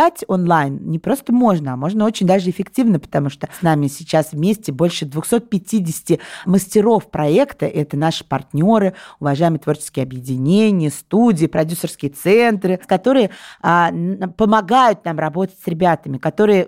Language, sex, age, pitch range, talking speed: Russian, female, 30-49, 150-205 Hz, 125 wpm